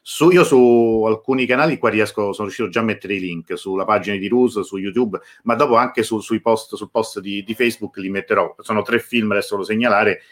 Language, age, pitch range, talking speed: Italian, 40-59, 100-115 Hz, 225 wpm